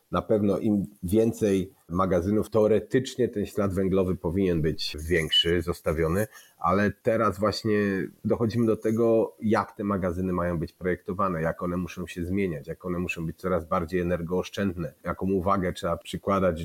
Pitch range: 90-105 Hz